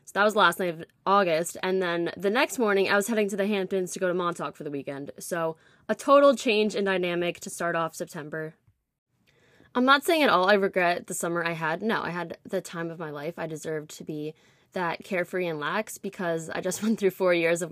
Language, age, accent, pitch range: English, 10-29, American, 165-215 Hz